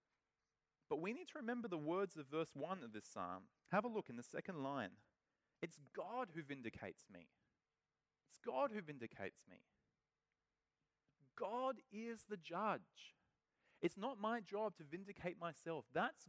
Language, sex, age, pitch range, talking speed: English, male, 30-49, 120-195 Hz, 155 wpm